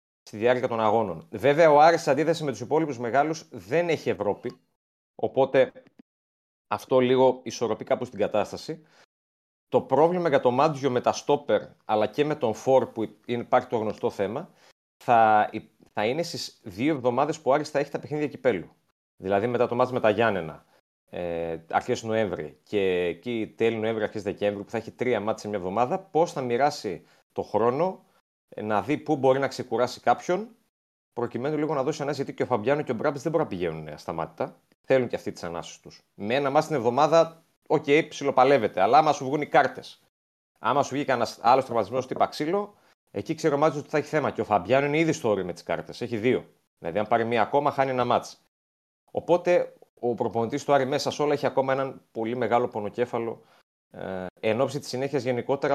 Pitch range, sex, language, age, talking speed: 110-145 Hz, male, Greek, 30-49, 190 wpm